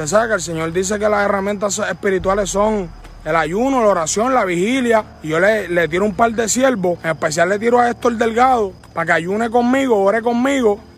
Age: 30-49